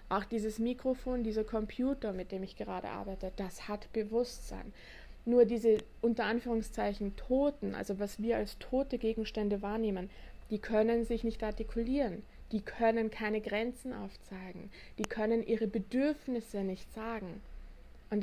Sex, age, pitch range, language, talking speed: female, 20-39, 210-230 Hz, German, 140 wpm